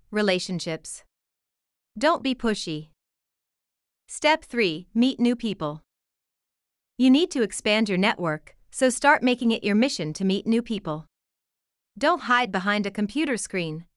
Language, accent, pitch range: English, American, 175-245 Hz